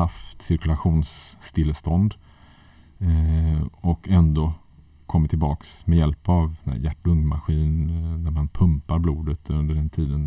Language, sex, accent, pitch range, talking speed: Swedish, male, Norwegian, 75-90 Hz, 100 wpm